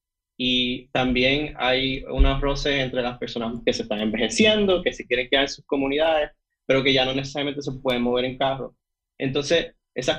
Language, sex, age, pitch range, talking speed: Spanish, male, 20-39, 120-135 Hz, 185 wpm